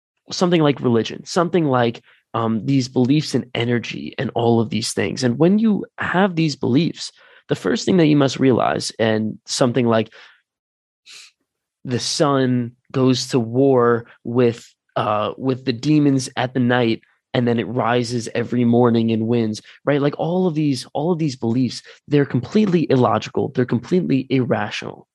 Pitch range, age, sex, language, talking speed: 115-145 Hz, 20-39, male, English, 160 wpm